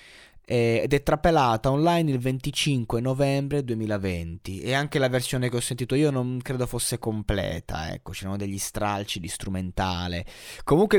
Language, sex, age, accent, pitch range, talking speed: Italian, male, 20-39, native, 110-135 Hz, 145 wpm